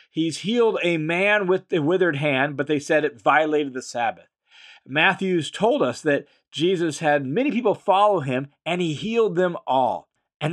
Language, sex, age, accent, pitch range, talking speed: English, male, 40-59, American, 140-215 Hz, 175 wpm